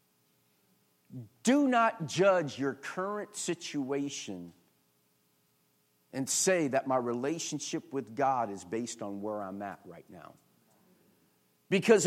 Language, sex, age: English, male, 50-69